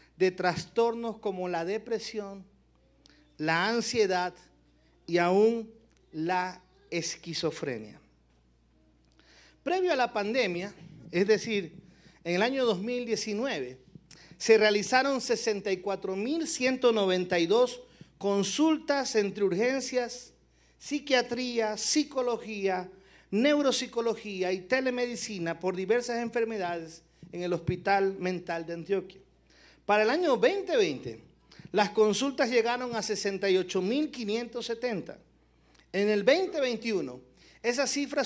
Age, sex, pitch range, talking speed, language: 50-69, male, 180-235 Hz, 85 wpm, Spanish